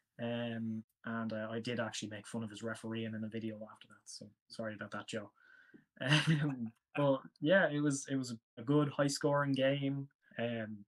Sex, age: male, 10-29